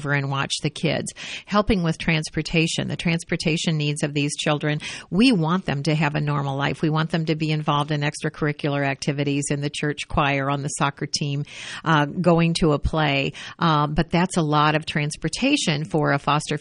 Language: English